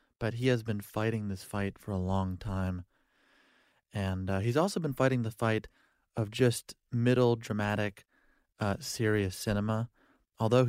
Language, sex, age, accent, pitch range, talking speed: English, male, 30-49, American, 100-120 Hz, 150 wpm